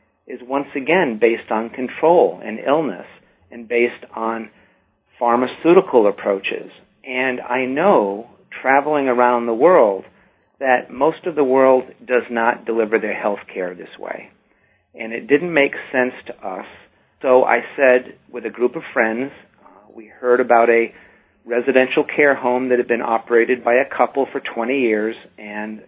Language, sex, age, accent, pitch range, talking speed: English, male, 50-69, American, 115-130 Hz, 155 wpm